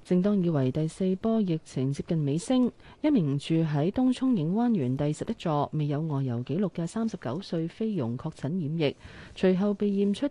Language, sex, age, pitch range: Chinese, female, 30-49, 130-190 Hz